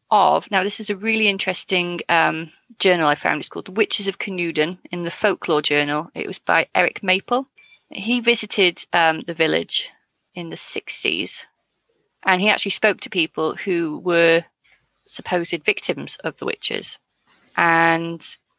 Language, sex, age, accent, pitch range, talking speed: English, female, 30-49, British, 170-210 Hz, 155 wpm